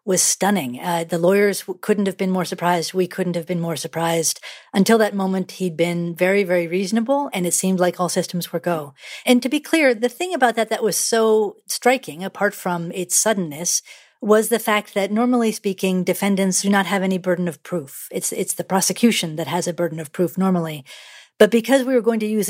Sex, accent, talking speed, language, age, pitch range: female, American, 215 wpm, English, 50-69, 170-210 Hz